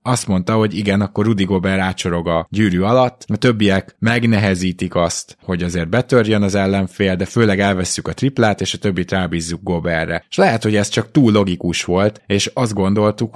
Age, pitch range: 20-39, 90-115 Hz